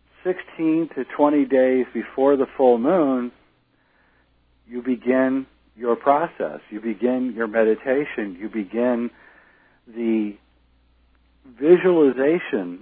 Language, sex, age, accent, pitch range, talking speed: English, male, 60-79, American, 100-135 Hz, 95 wpm